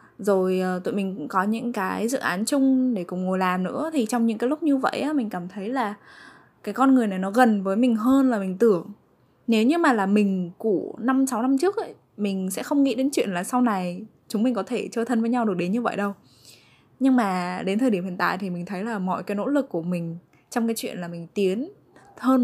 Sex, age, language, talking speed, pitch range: female, 10-29, Vietnamese, 255 wpm, 180-240 Hz